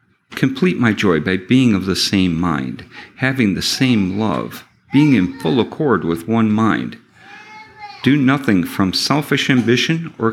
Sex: male